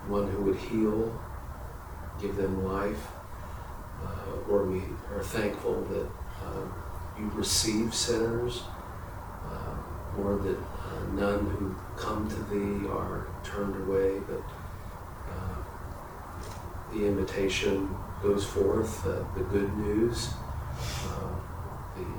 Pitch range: 90-100 Hz